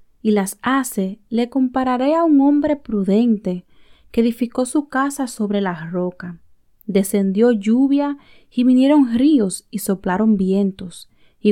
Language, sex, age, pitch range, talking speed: Spanish, female, 30-49, 195-255 Hz, 130 wpm